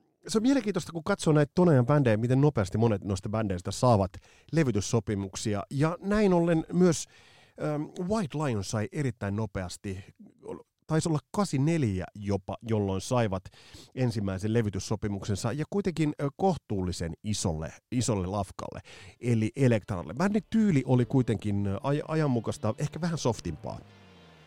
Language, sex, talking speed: Finnish, male, 115 wpm